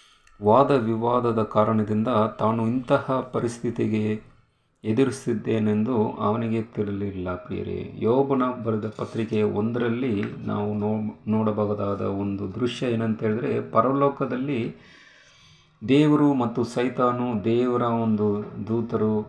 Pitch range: 105-125 Hz